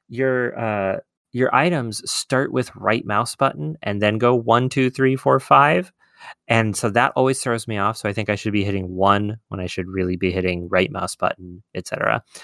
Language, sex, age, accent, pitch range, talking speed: English, male, 30-49, American, 95-125 Hz, 205 wpm